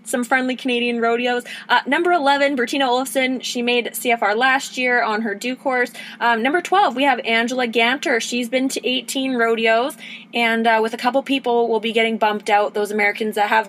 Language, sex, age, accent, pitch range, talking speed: English, female, 20-39, American, 220-265 Hz, 195 wpm